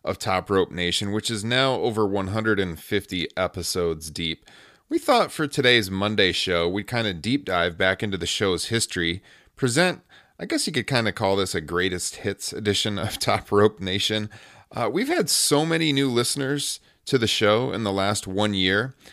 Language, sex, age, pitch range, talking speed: English, male, 30-49, 95-135 Hz, 185 wpm